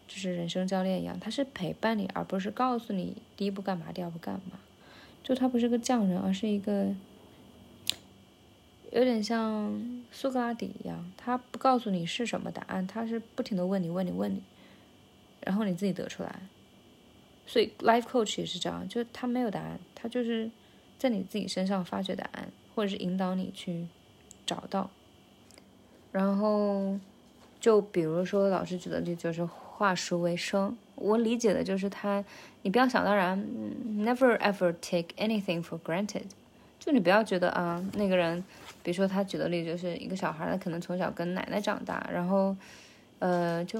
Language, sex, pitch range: Chinese, female, 180-225 Hz